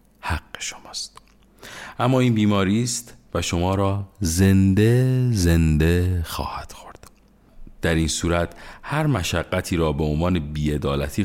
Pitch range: 75-95 Hz